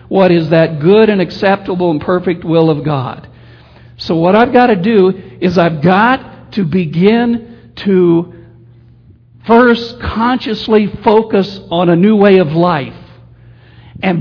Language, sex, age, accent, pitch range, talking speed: English, male, 60-79, American, 150-200 Hz, 140 wpm